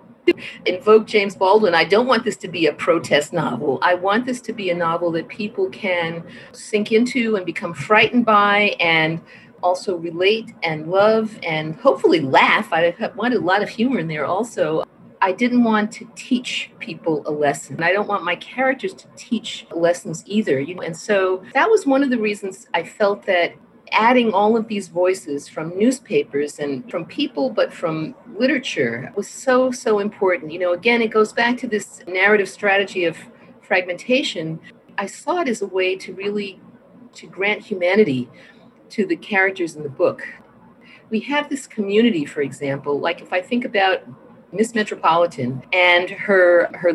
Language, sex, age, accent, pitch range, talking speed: English, female, 50-69, American, 180-240 Hz, 175 wpm